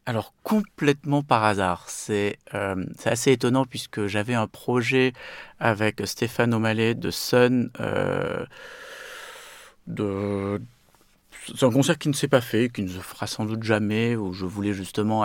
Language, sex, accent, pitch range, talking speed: French, male, French, 100-125 Hz, 155 wpm